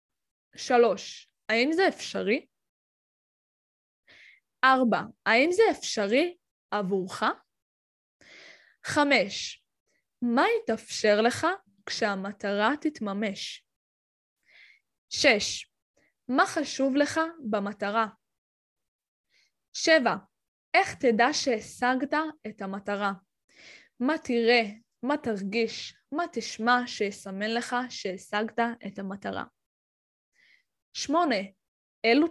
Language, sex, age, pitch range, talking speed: Hebrew, female, 10-29, 210-295 Hz, 70 wpm